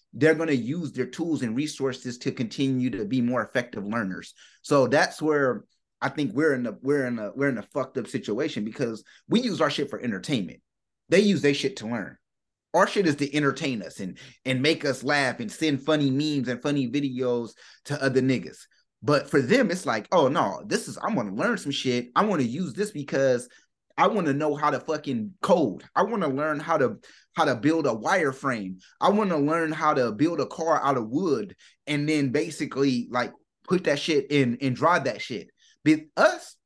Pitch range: 135-155 Hz